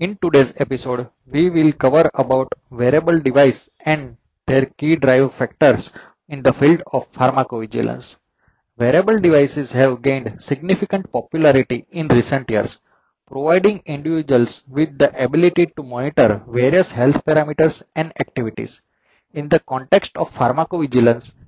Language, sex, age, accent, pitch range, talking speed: English, male, 20-39, Indian, 125-155 Hz, 125 wpm